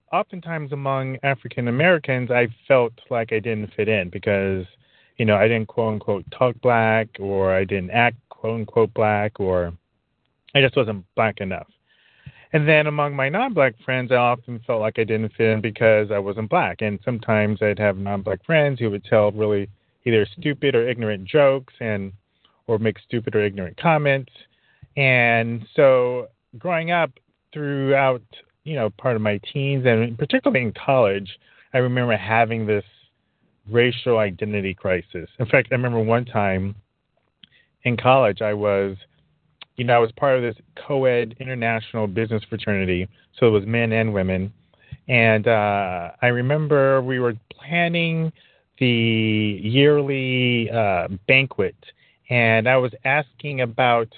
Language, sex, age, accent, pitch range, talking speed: English, male, 30-49, American, 105-130 Hz, 150 wpm